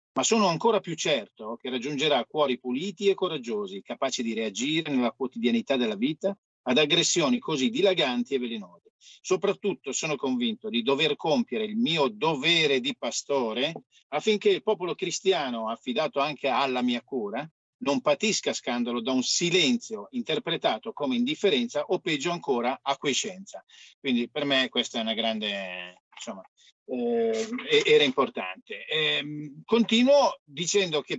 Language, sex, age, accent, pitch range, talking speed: Italian, male, 50-69, native, 130-215 Hz, 140 wpm